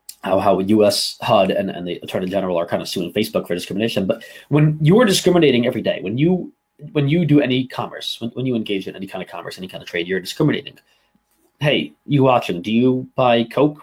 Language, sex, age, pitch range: English, male, 30-49, 115-150 Hz